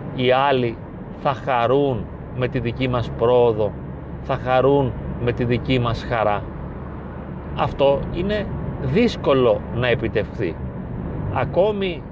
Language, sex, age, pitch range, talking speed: Greek, male, 40-59, 120-160 Hz, 110 wpm